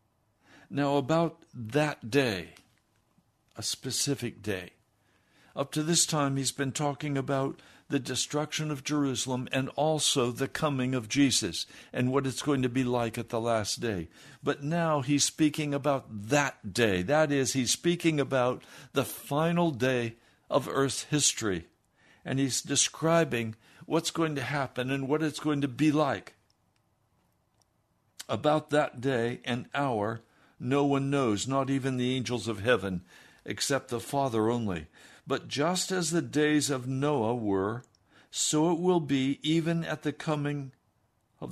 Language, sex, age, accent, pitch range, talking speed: English, male, 60-79, American, 120-145 Hz, 150 wpm